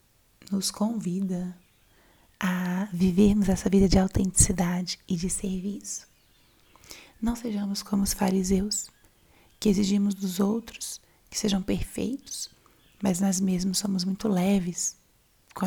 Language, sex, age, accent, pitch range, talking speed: Portuguese, female, 20-39, Brazilian, 185-205 Hz, 115 wpm